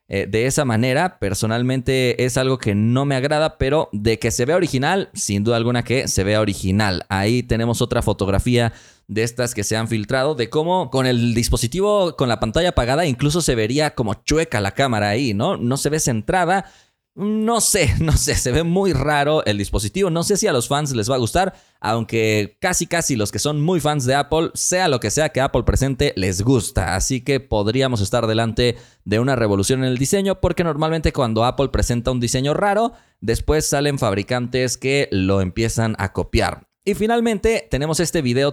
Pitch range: 110-155 Hz